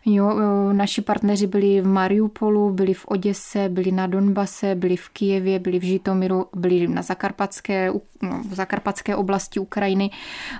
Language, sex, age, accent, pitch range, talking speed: Czech, female, 20-39, native, 185-205 Hz, 140 wpm